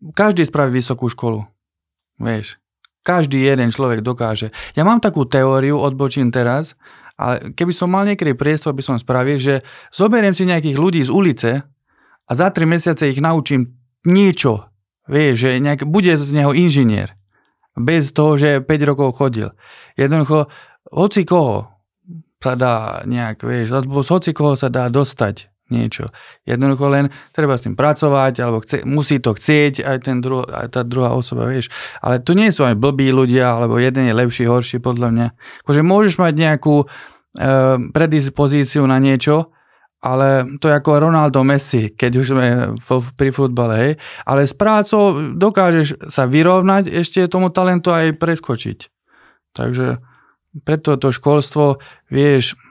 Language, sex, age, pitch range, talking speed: Slovak, male, 20-39, 125-155 Hz, 155 wpm